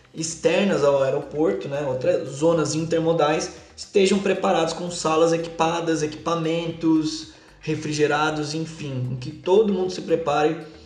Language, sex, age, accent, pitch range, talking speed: Portuguese, male, 20-39, Brazilian, 140-170 Hz, 110 wpm